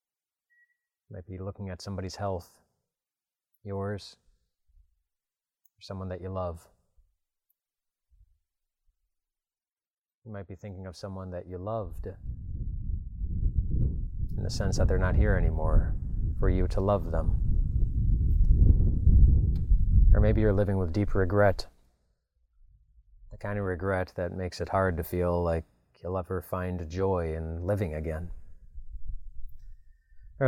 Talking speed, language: 120 wpm, English